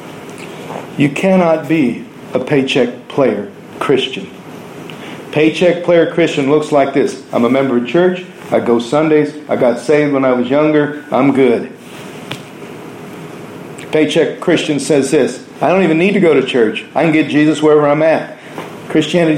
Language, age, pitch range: English, 50-69, 140-165 Hz